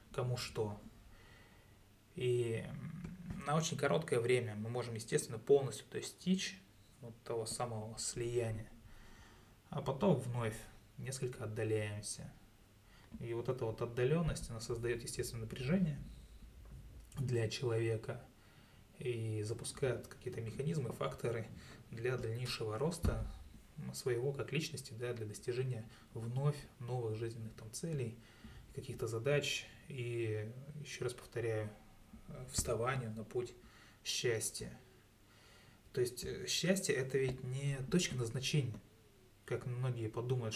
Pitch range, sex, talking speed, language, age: 110-130 Hz, male, 105 wpm, Russian, 20-39